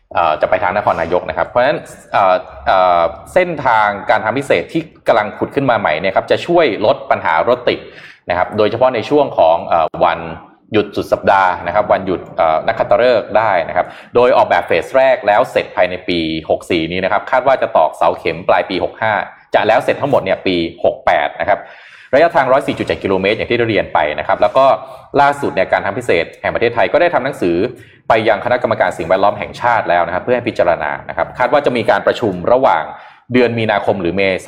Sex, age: male, 20-39